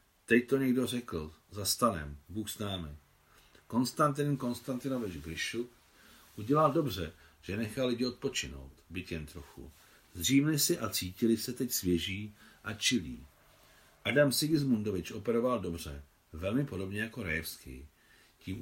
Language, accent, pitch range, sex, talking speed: Czech, native, 85-120 Hz, male, 120 wpm